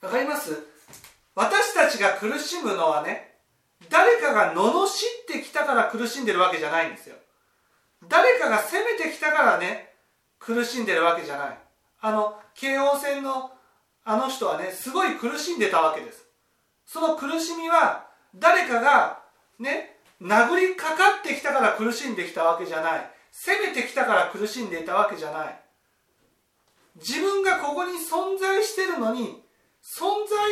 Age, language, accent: 40-59, Japanese, native